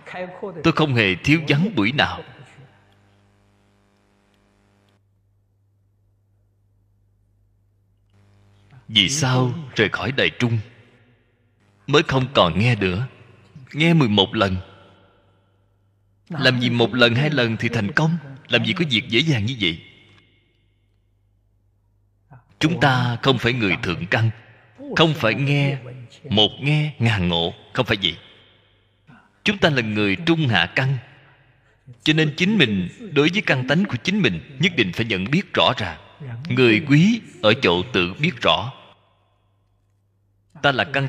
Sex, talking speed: male, 130 wpm